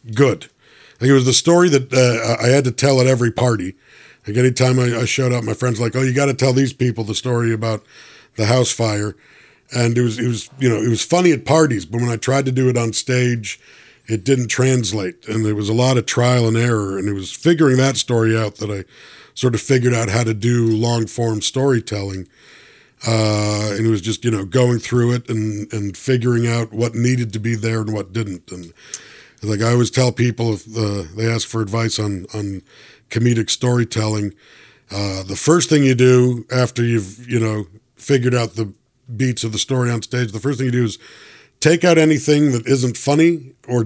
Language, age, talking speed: English, 50-69, 220 wpm